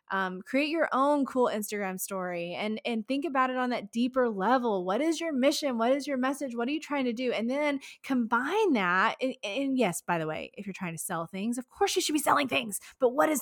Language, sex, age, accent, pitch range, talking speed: English, female, 20-39, American, 190-260 Hz, 250 wpm